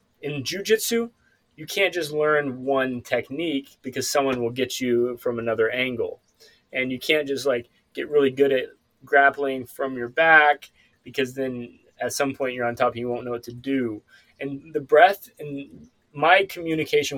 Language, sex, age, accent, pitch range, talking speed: English, male, 20-39, American, 125-155 Hz, 175 wpm